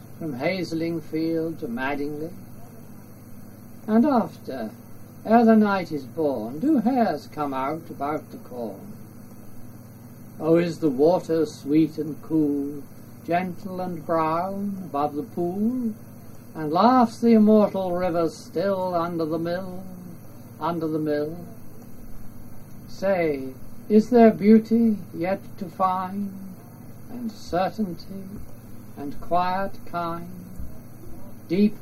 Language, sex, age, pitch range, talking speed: English, male, 60-79, 115-185 Hz, 105 wpm